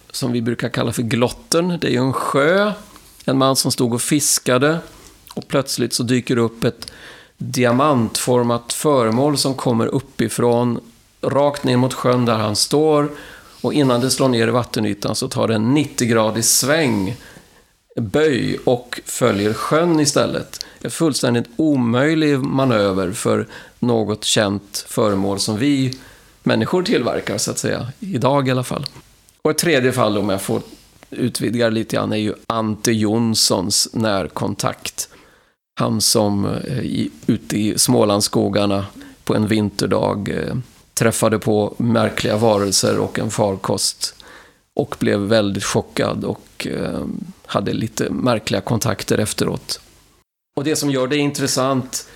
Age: 40-59